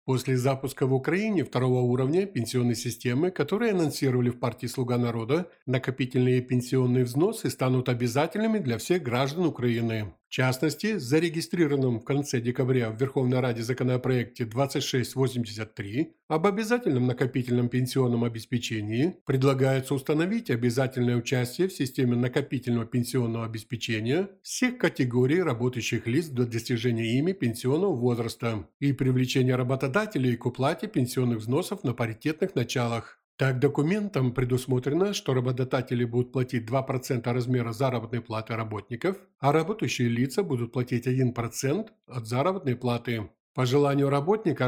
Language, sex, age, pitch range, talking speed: Ukrainian, male, 50-69, 120-140 Hz, 120 wpm